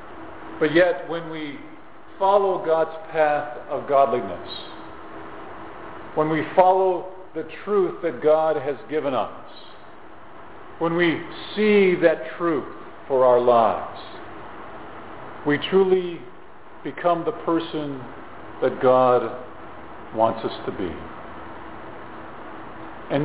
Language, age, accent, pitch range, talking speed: English, 50-69, American, 135-175 Hz, 100 wpm